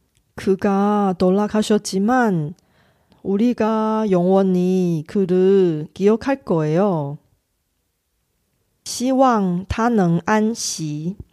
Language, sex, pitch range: Korean, female, 175-235 Hz